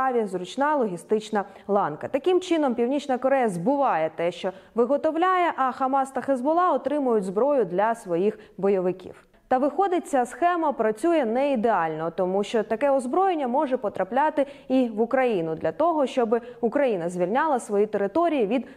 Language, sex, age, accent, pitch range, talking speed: Ukrainian, female, 20-39, native, 210-280 Hz, 140 wpm